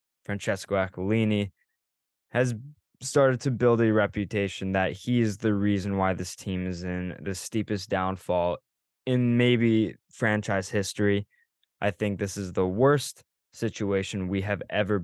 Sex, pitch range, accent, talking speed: male, 95-110 Hz, American, 140 wpm